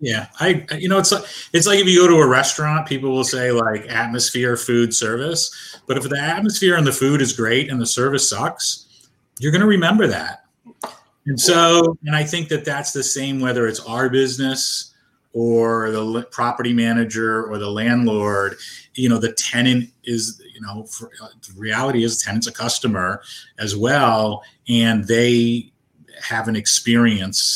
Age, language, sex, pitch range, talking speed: 30-49, English, male, 105-130 Hz, 175 wpm